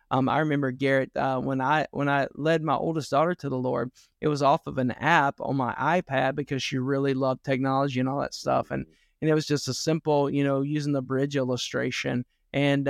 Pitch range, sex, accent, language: 135-155 Hz, male, American, English